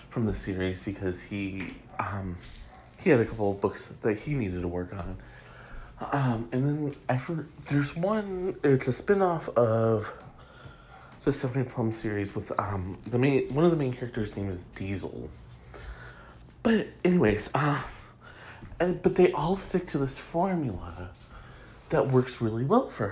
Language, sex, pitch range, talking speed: English, male, 105-145 Hz, 160 wpm